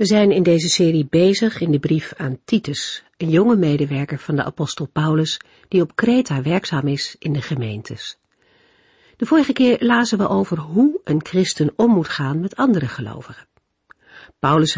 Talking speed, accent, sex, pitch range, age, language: 170 wpm, Dutch, female, 140-195 Hz, 50-69, Dutch